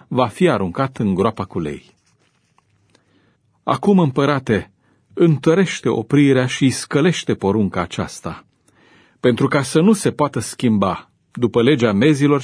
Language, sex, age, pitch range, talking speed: Romanian, male, 40-59, 100-135 Hz, 120 wpm